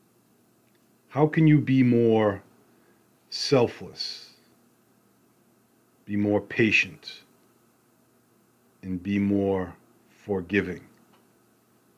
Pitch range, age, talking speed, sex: 100-130 Hz, 40-59, 65 wpm, male